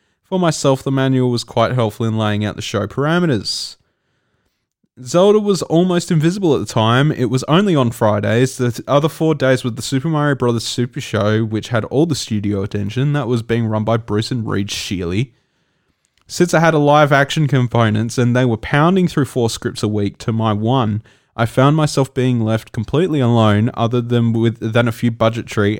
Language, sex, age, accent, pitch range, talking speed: English, male, 20-39, Australian, 110-140 Hz, 195 wpm